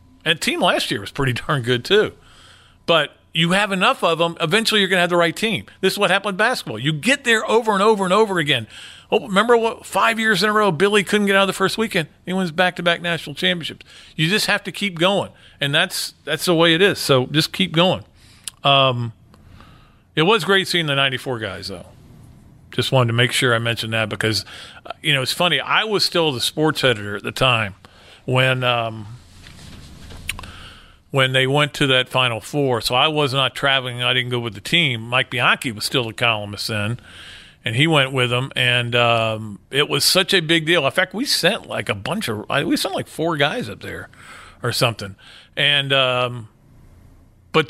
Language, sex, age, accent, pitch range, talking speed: English, male, 40-59, American, 110-170 Hz, 210 wpm